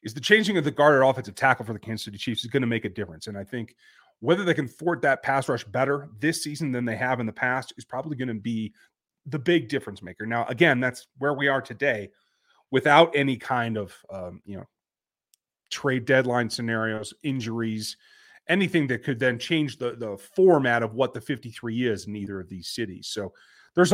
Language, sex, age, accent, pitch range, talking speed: English, male, 30-49, American, 115-165 Hz, 215 wpm